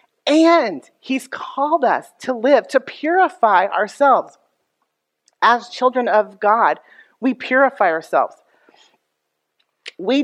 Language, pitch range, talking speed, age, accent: English, 170-240 Hz, 100 wpm, 40-59, American